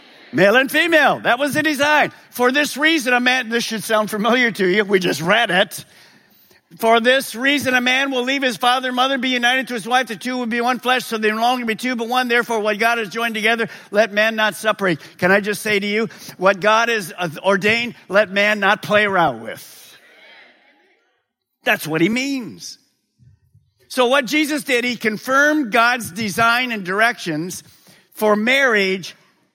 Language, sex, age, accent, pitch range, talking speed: English, male, 50-69, American, 195-250 Hz, 190 wpm